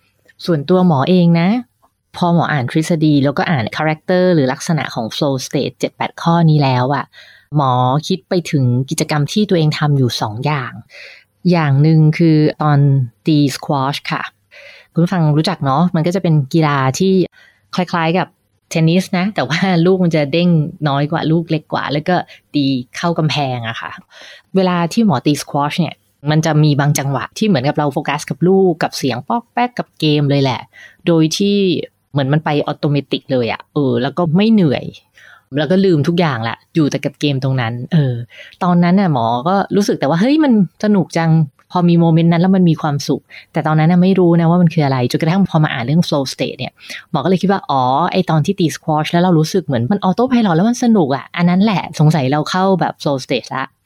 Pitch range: 140-180 Hz